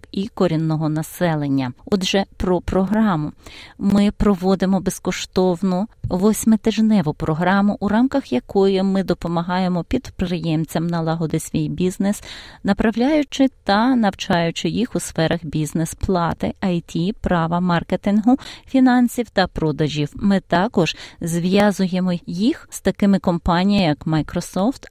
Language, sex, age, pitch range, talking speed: Ukrainian, female, 30-49, 165-215 Hz, 100 wpm